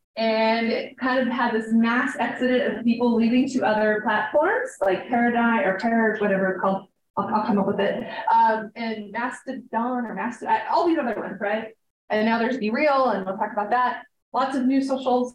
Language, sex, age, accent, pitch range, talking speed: English, female, 20-39, American, 215-260 Hz, 200 wpm